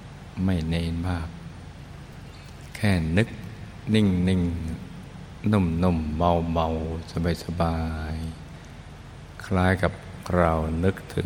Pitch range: 80-90 Hz